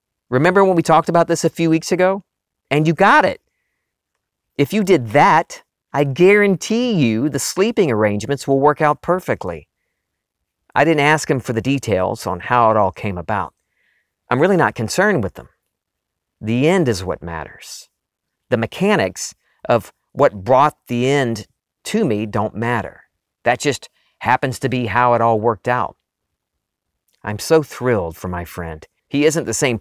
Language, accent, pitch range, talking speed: English, American, 105-145 Hz, 165 wpm